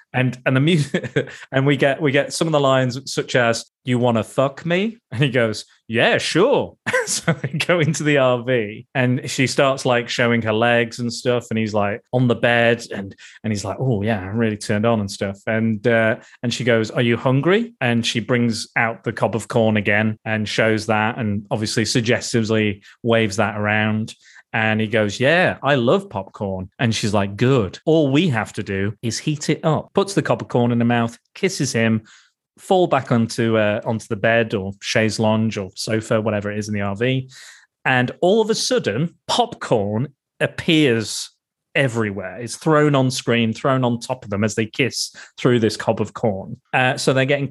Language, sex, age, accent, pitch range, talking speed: English, male, 30-49, British, 110-140 Hz, 205 wpm